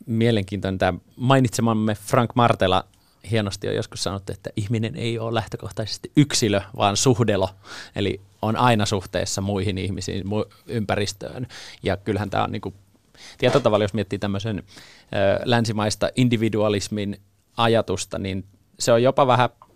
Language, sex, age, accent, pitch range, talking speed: Finnish, male, 30-49, native, 100-115 Hz, 135 wpm